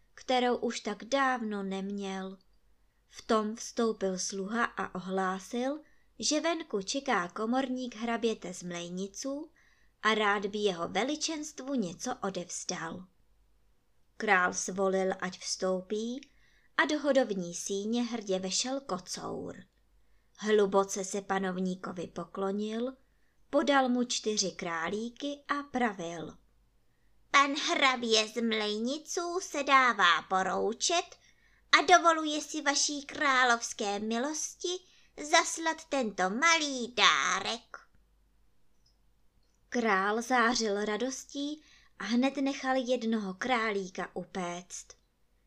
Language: Czech